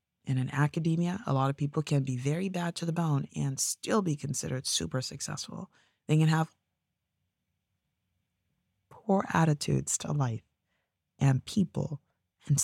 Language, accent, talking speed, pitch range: English, American, 140 wpm, 125-160 Hz